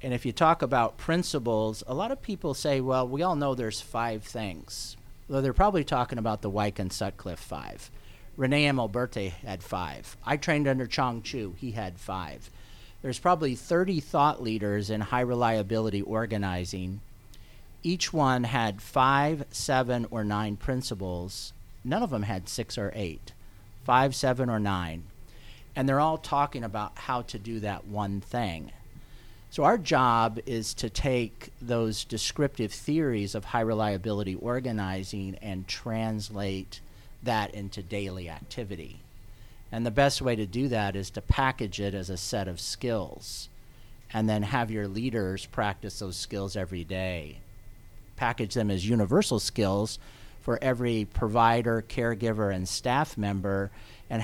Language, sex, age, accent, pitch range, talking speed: English, male, 50-69, American, 100-125 Hz, 150 wpm